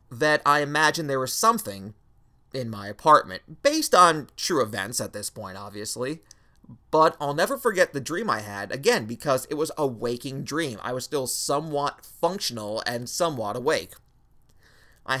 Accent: American